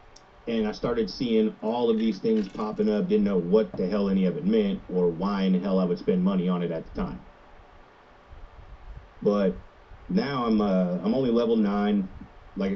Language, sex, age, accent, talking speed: English, male, 30-49, American, 200 wpm